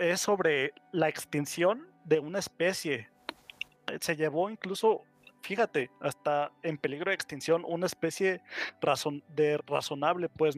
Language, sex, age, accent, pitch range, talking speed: Spanish, male, 30-49, Mexican, 145-175 Hz, 125 wpm